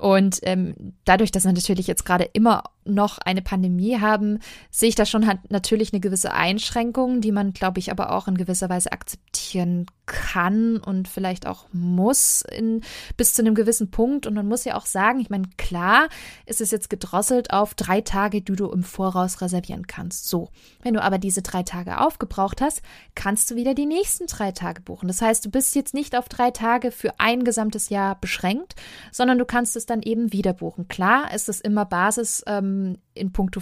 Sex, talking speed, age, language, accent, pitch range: female, 200 wpm, 20-39, German, German, 195-245 Hz